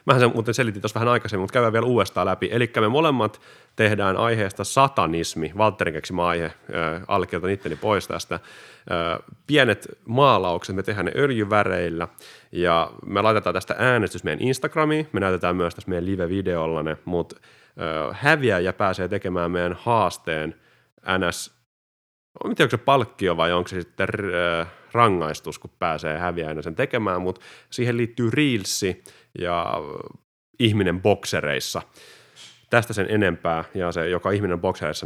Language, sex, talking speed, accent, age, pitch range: Finnish, male, 140 wpm, native, 30-49, 85-110 Hz